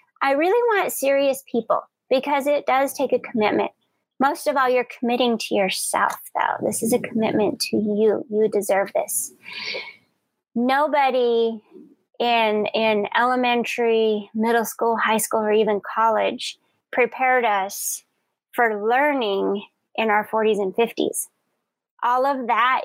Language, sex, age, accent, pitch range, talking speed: English, female, 30-49, American, 210-265 Hz, 135 wpm